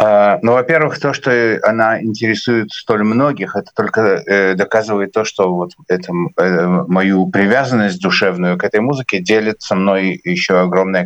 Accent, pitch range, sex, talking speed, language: native, 95-115 Hz, male, 150 wpm, Russian